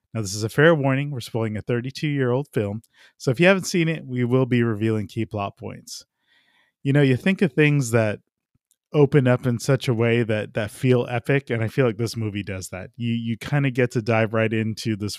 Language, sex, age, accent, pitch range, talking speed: English, male, 20-39, American, 110-140 Hz, 235 wpm